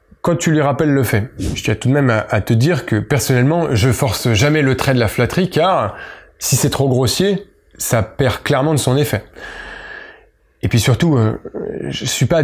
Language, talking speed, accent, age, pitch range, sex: French, 200 wpm, French, 20-39, 125-170 Hz, male